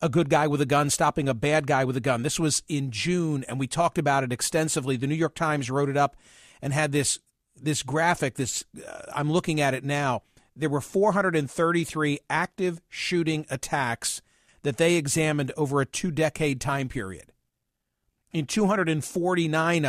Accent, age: American, 50-69